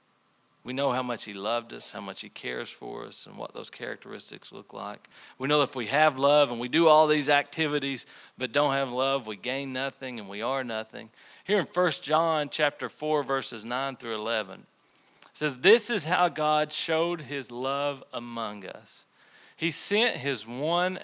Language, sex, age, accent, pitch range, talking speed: English, male, 40-59, American, 120-155 Hz, 195 wpm